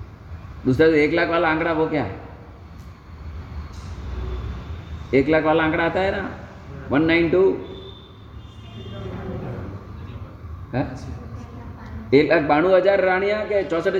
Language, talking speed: Hindi, 90 wpm